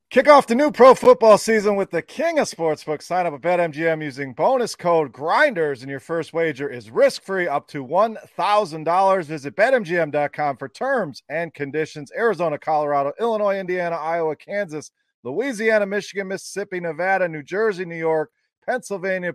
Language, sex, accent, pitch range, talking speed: English, male, American, 155-205 Hz, 155 wpm